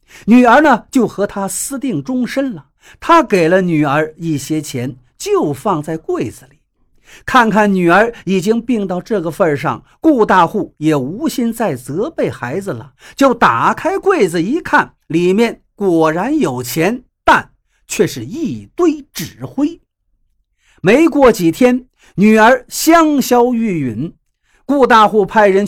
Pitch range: 160-260 Hz